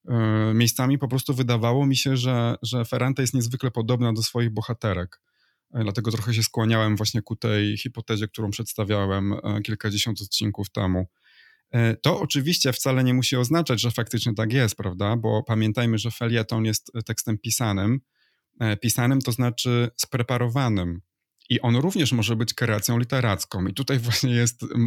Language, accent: Polish, native